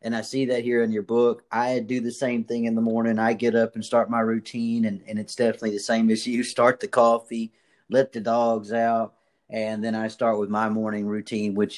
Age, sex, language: 40-59, male, English